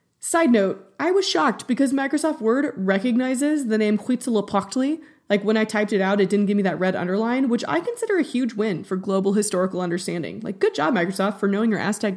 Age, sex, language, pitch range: 20-39, female, English, 195-270 Hz